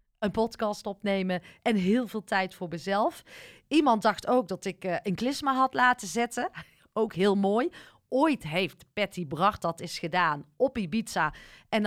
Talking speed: 165 wpm